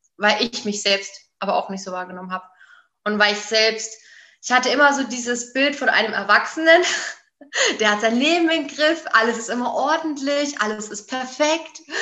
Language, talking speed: German, 180 wpm